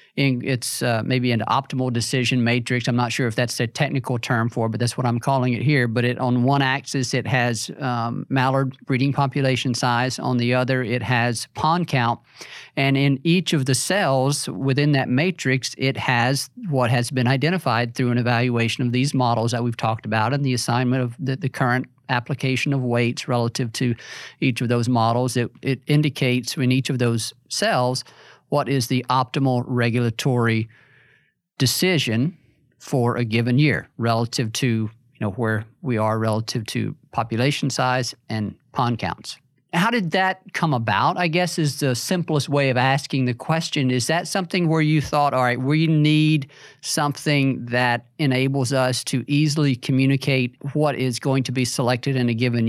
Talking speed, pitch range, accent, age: 180 wpm, 120-140 Hz, American, 50-69